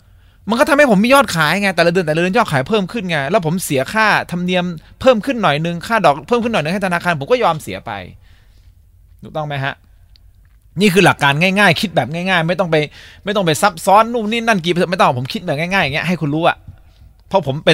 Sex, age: male, 20-39